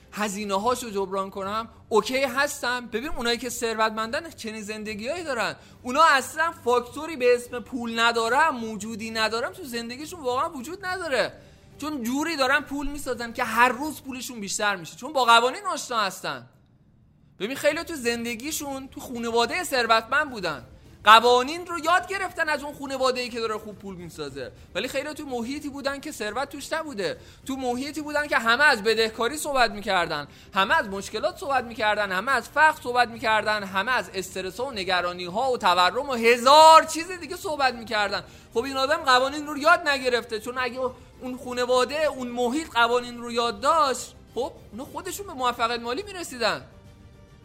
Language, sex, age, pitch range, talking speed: Persian, male, 20-39, 225-295 Hz, 160 wpm